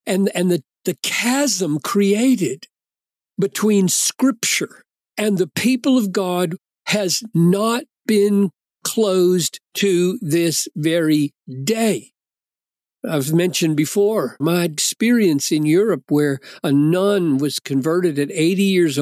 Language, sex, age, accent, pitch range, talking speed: English, male, 60-79, American, 150-210 Hz, 115 wpm